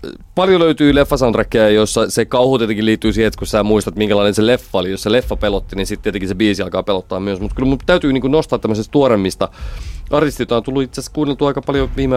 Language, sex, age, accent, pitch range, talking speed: Finnish, male, 30-49, native, 90-115 Hz, 220 wpm